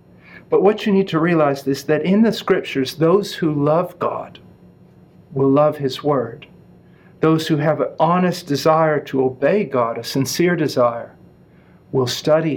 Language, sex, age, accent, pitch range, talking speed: English, male, 50-69, American, 135-170 Hz, 160 wpm